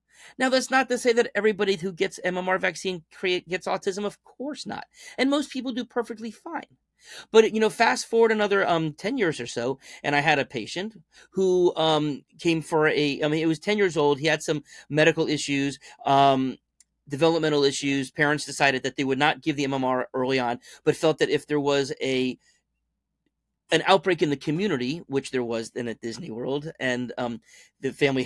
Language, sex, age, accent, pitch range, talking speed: English, male, 30-49, American, 135-180 Hz, 195 wpm